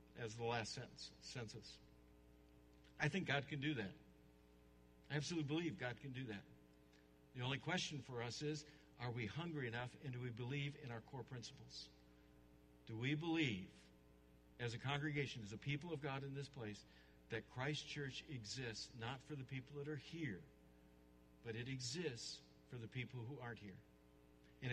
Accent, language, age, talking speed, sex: American, English, 60-79, 170 wpm, male